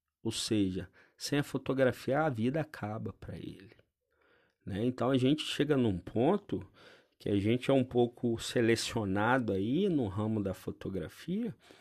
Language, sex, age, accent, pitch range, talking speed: Portuguese, male, 40-59, Brazilian, 105-155 Hz, 145 wpm